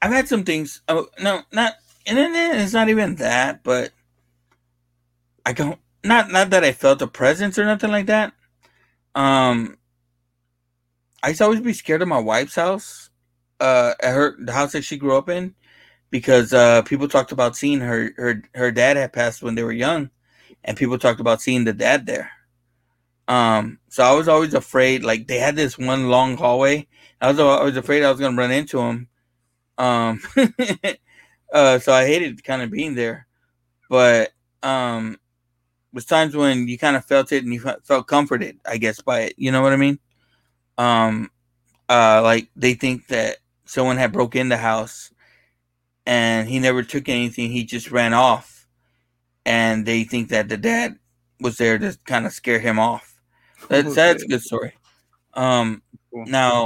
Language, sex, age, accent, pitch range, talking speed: English, male, 30-49, American, 115-145 Hz, 180 wpm